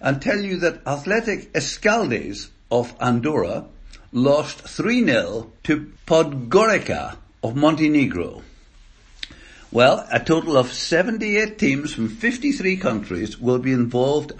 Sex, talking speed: male, 110 wpm